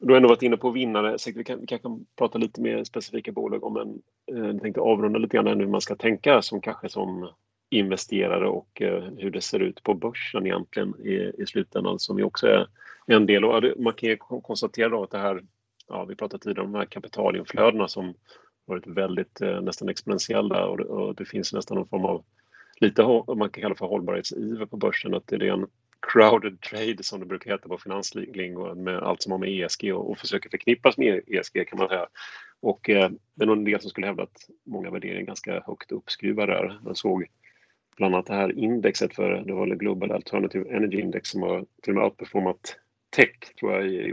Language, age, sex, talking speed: Swedish, 30-49, male, 215 wpm